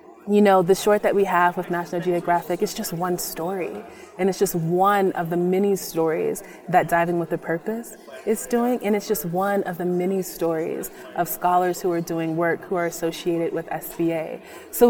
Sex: female